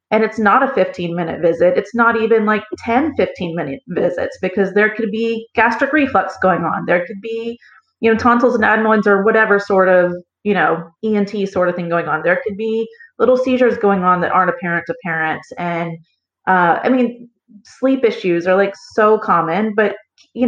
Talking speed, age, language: 195 wpm, 30-49, English